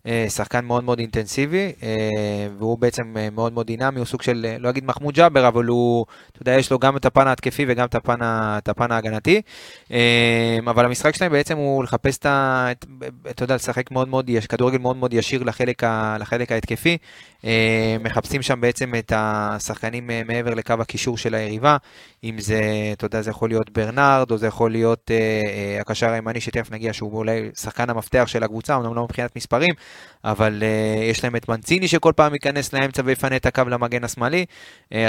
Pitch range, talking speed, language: 110-130 Hz, 180 wpm, Hebrew